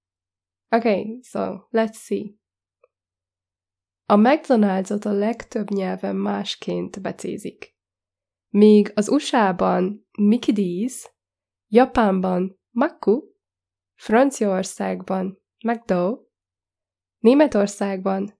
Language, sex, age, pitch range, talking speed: Hungarian, female, 20-39, 185-225 Hz, 70 wpm